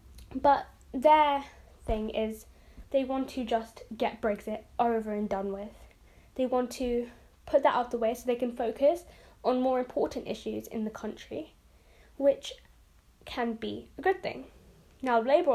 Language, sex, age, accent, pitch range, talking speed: English, female, 10-29, British, 220-270 Hz, 160 wpm